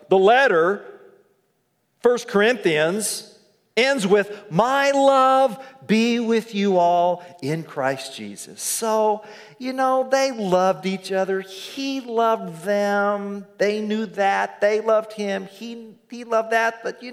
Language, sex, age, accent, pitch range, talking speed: English, male, 40-59, American, 205-310 Hz, 130 wpm